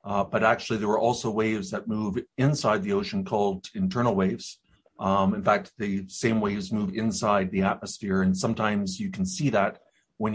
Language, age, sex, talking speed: English, 40-59, male, 185 wpm